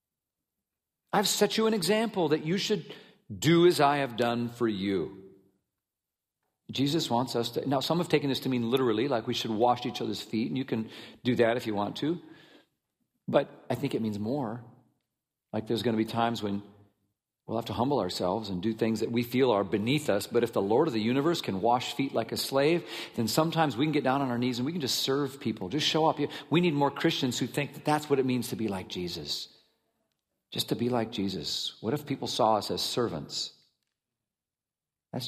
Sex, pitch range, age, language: male, 115-155 Hz, 50-69, English